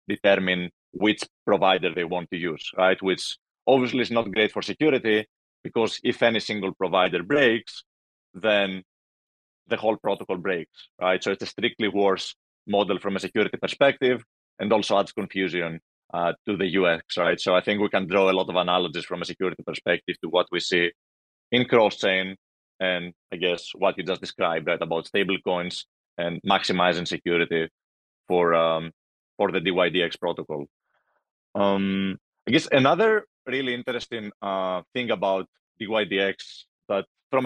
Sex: male